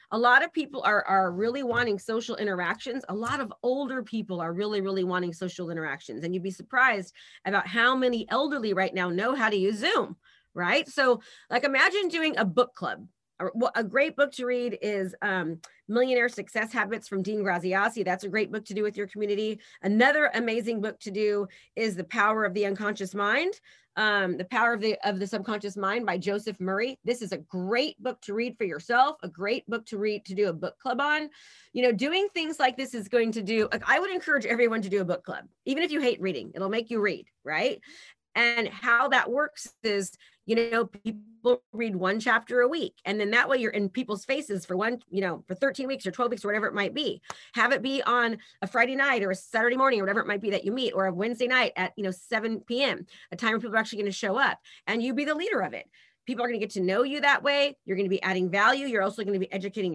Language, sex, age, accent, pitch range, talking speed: English, female, 30-49, American, 200-250 Hz, 240 wpm